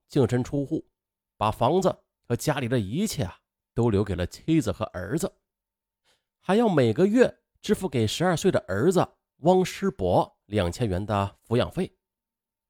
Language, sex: Chinese, male